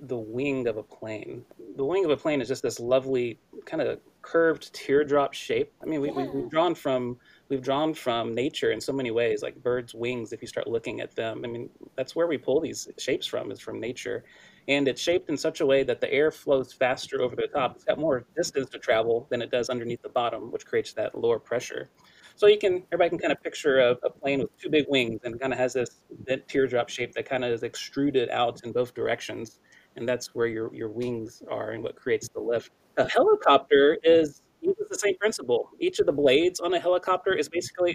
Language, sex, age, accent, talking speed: English, male, 30-49, American, 230 wpm